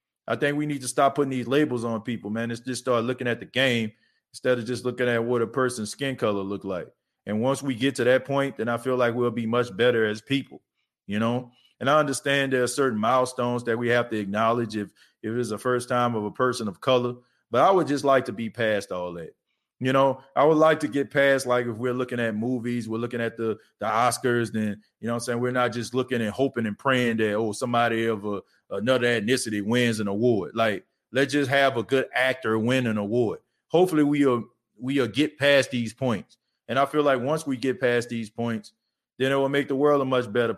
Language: English